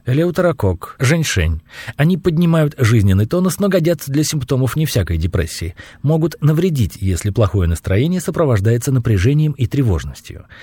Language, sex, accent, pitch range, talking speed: Russian, male, native, 105-155 Hz, 125 wpm